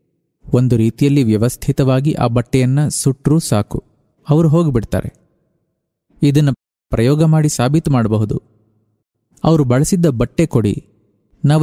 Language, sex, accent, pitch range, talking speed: English, male, Indian, 115-155 Hz, 100 wpm